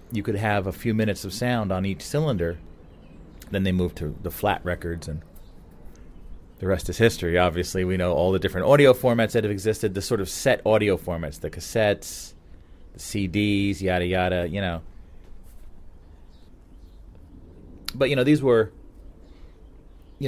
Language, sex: English, male